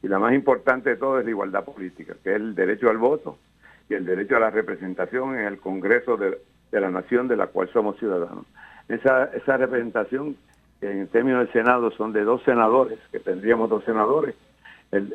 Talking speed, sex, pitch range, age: 195 wpm, male, 105-130 Hz, 60-79